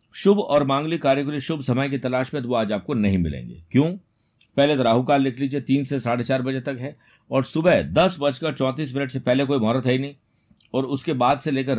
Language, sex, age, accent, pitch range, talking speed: Hindi, male, 50-69, native, 110-140 Hz, 240 wpm